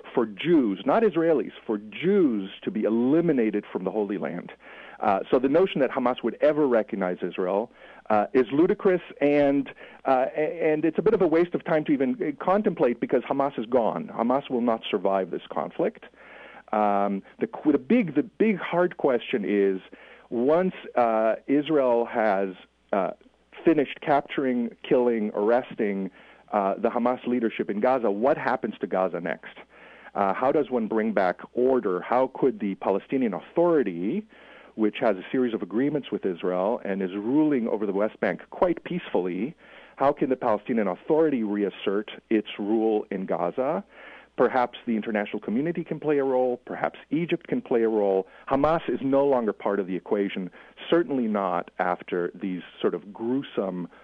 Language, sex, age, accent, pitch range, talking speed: English, male, 40-59, American, 105-155 Hz, 165 wpm